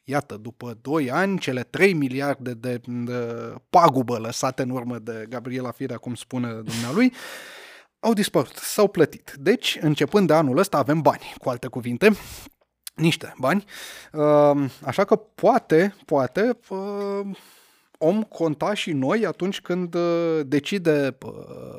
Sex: male